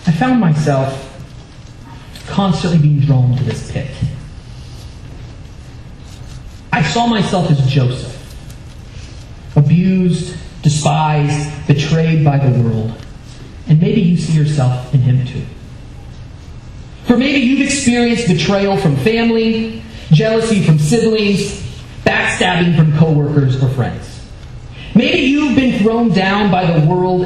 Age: 30-49